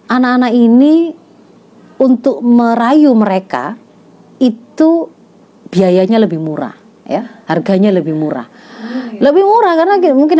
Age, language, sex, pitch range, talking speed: 30-49, Indonesian, female, 165-240 Hz, 100 wpm